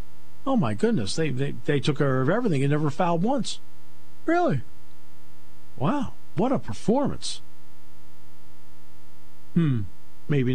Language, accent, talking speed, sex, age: English, American, 120 wpm, male, 50-69